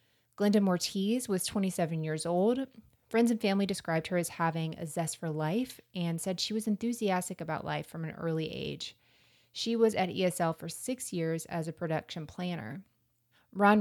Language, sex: English, female